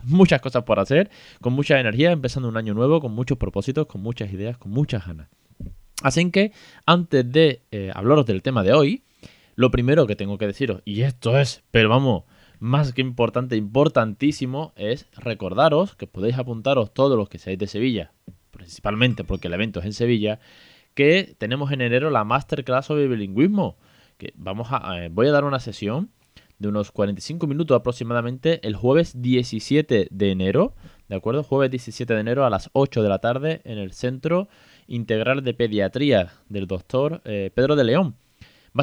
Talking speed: 180 wpm